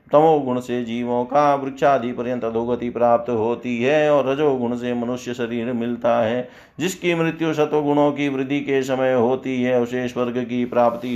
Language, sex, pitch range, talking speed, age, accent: Hindi, male, 120-140 Hz, 160 wpm, 50-69, native